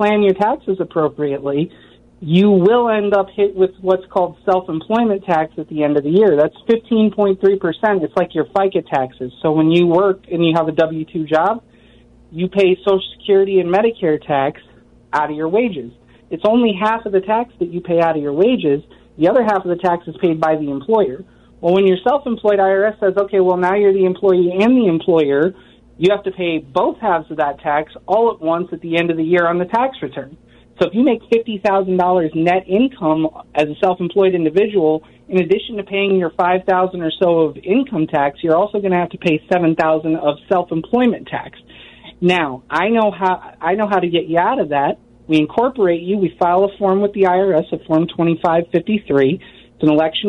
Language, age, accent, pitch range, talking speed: English, 40-59, American, 160-200 Hz, 205 wpm